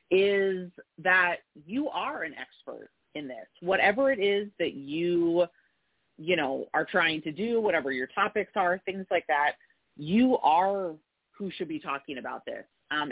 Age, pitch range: 30-49, 145-185 Hz